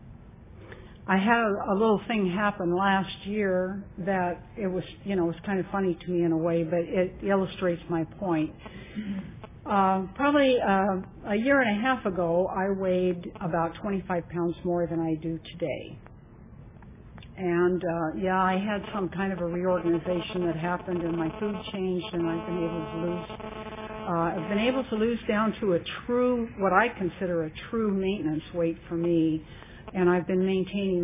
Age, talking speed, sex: 60-79, 180 wpm, female